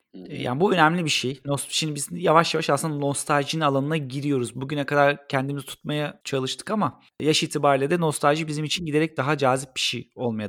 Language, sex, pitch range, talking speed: Turkish, male, 120-155 Hz, 175 wpm